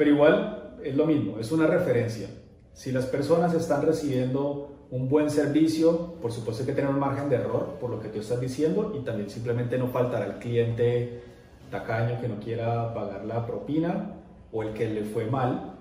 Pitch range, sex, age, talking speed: 110-145 Hz, male, 30-49, 195 wpm